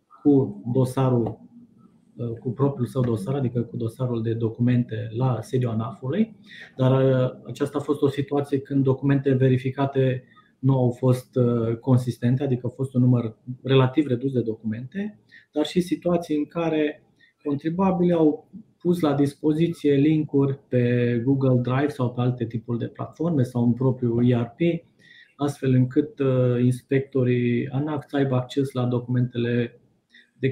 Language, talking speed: Romanian, 140 wpm